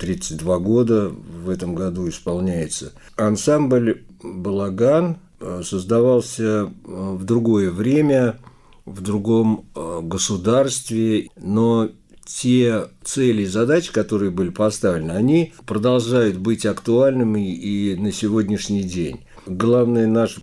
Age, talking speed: 50-69, 95 wpm